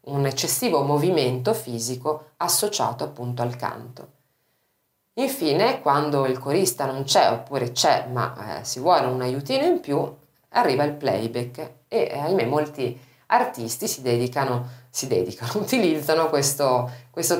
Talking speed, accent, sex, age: 135 wpm, native, female, 30-49